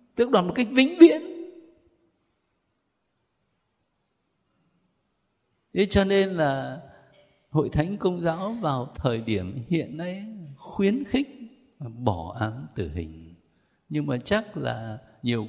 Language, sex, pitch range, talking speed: Vietnamese, male, 120-195 Hz, 115 wpm